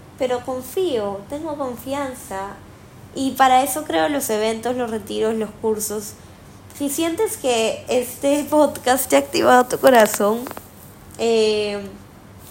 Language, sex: Spanish, female